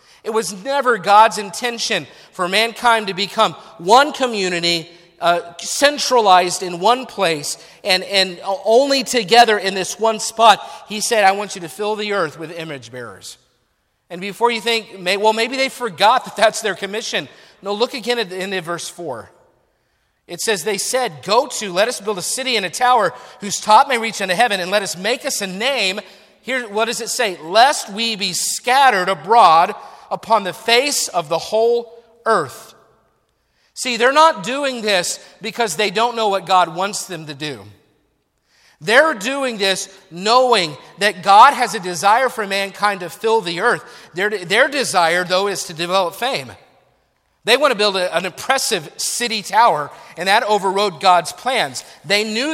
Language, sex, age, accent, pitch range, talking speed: English, male, 40-59, American, 180-230 Hz, 175 wpm